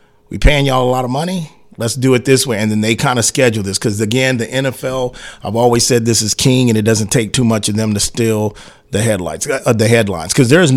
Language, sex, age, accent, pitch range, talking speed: English, male, 40-59, American, 110-135 Hz, 250 wpm